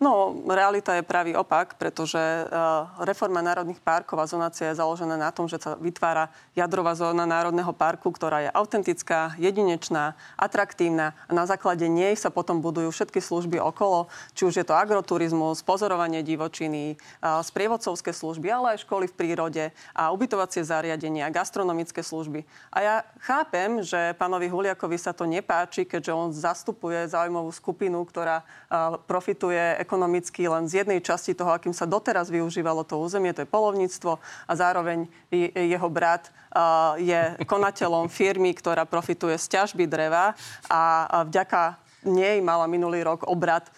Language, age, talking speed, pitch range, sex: Slovak, 30-49, 150 wpm, 165-195 Hz, female